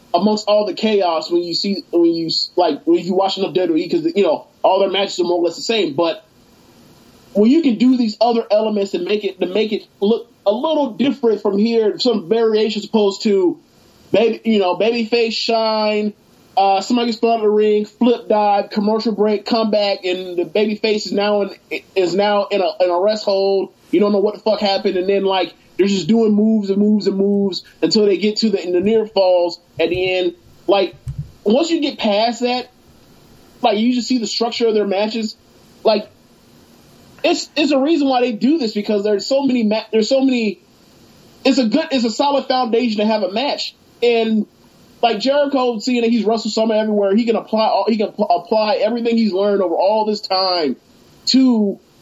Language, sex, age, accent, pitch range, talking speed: English, male, 30-49, American, 195-230 Hz, 210 wpm